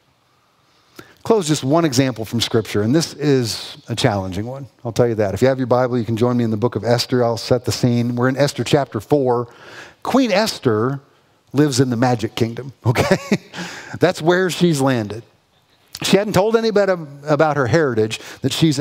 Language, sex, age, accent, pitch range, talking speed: English, male, 50-69, American, 125-195 Hz, 190 wpm